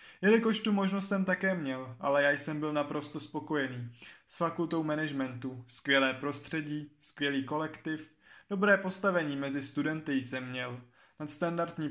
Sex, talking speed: male, 130 wpm